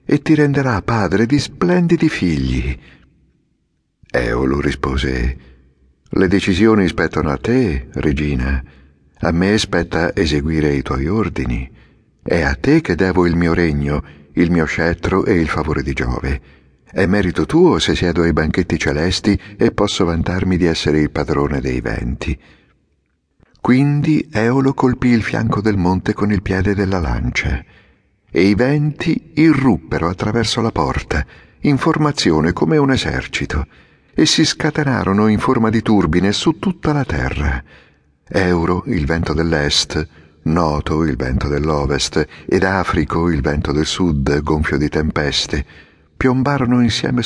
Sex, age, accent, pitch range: male, 50-69, native, 75-115 Hz